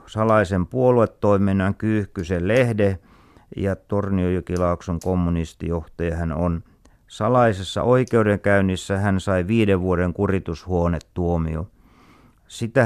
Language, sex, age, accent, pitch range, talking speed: Finnish, male, 50-69, native, 90-115 Hz, 80 wpm